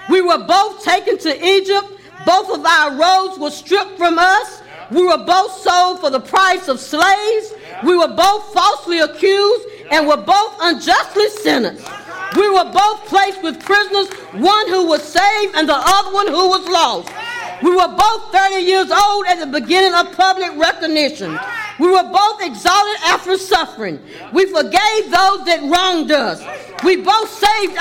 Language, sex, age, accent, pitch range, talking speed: English, female, 40-59, American, 325-400 Hz, 165 wpm